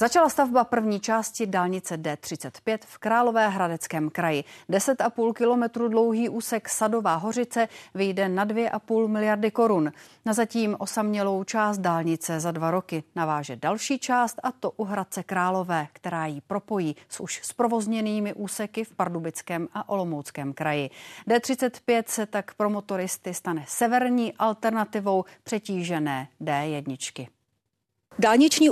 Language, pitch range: Czech, 190-235 Hz